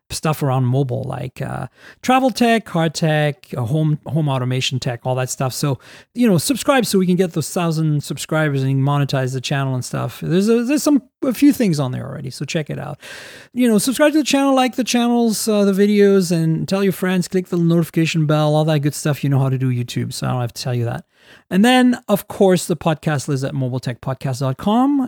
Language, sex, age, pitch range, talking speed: English, male, 40-59, 145-215 Hz, 225 wpm